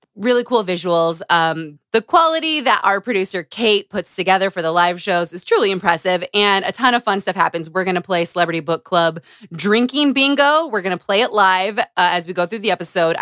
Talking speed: 220 wpm